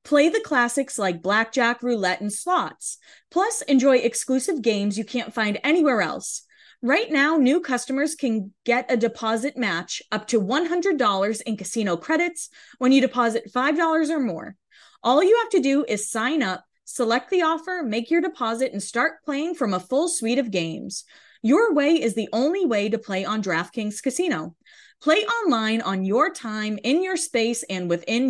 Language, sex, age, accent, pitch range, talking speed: English, female, 20-39, American, 210-290 Hz, 175 wpm